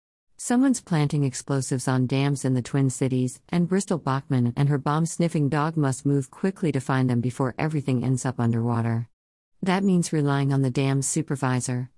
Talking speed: 175 wpm